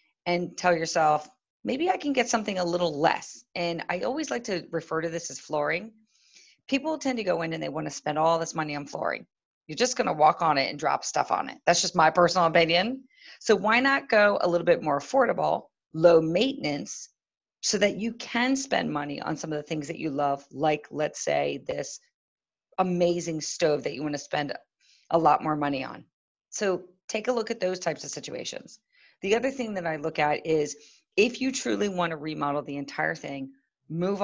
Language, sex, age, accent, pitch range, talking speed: English, female, 40-59, American, 150-200 Hz, 205 wpm